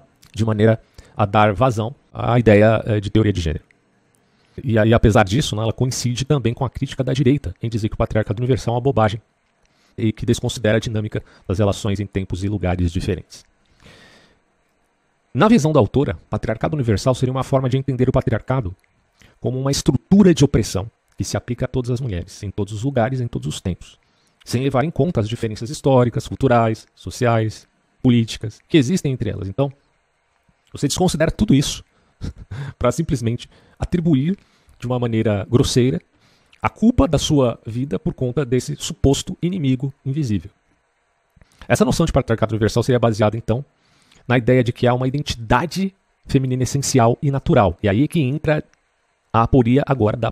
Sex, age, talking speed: male, 40-59, 170 wpm